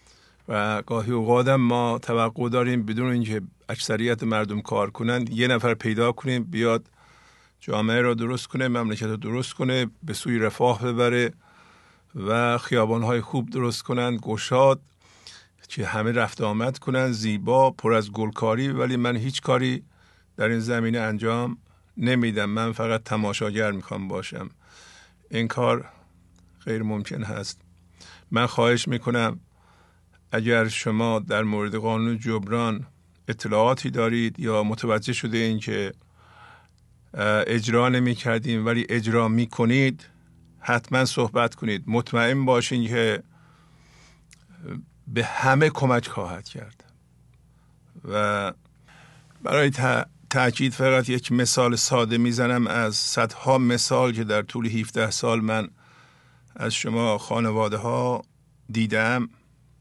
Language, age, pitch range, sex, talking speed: English, 50-69, 110-125 Hz, male, 120 wpm